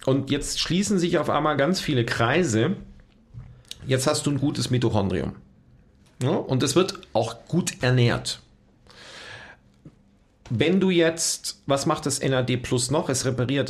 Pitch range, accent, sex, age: 115-155 Hz, German, male, 50-69